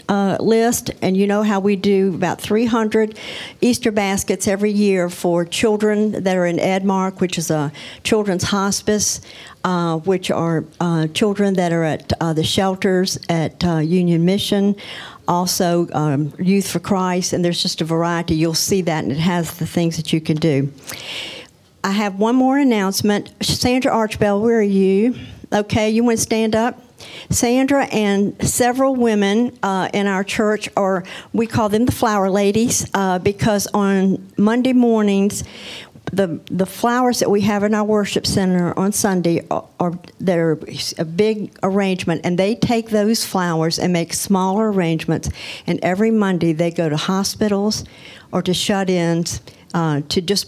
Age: 60-79